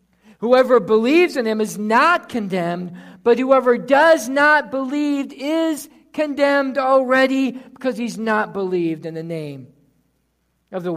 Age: 50-69